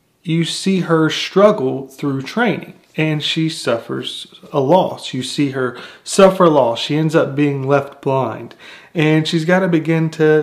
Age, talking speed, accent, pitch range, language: 30-49, 160 wpm, American, 140-170 Hz, English